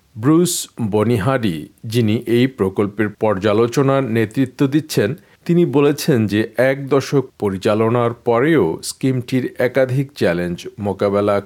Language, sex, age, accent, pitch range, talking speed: Bengali, male, 50-69, native, 105-140 Hz, 100 wpm